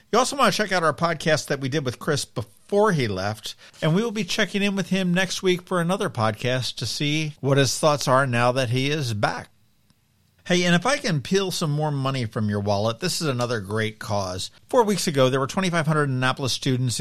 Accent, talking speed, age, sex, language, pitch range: American, 230 wpm, 50-69, male, English, 115-150 Hz